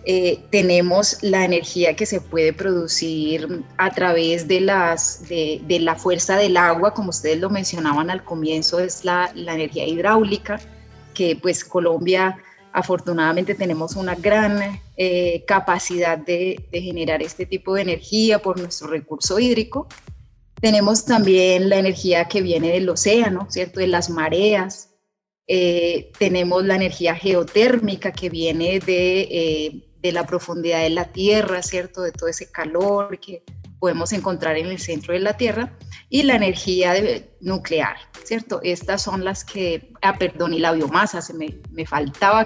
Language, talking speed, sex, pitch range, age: Spanish, 155 wpm, female, 170-195 Hz, 30-49